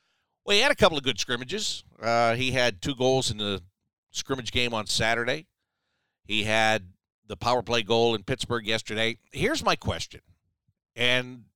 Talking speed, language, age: 165 wpm, English, 50-69